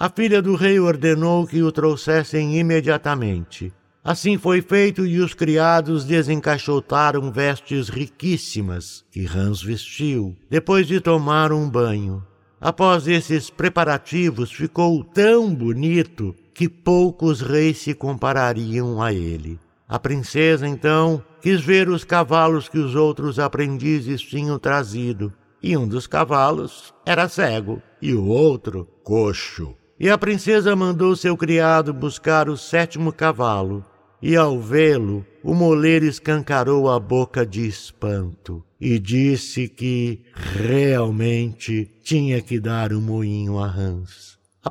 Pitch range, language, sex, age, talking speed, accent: 115-165 Hz, Portuguese, male, 60-79, 125 wpm, Brazilian